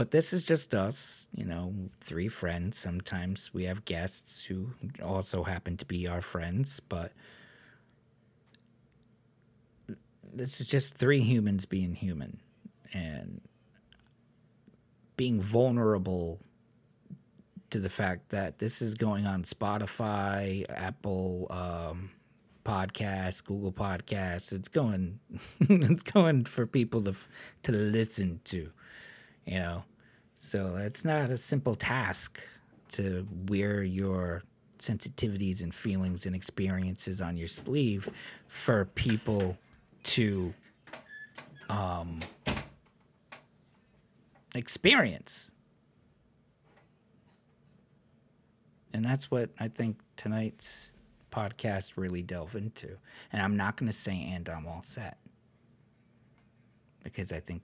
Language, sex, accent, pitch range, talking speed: English, male, American, 90-115 Hz, 105 wpm